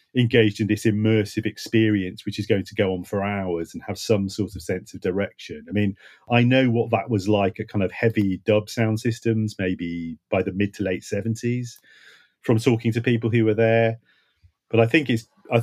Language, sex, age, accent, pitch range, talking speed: English, male, 40-59, British, 100-115 Hz, 210 wpm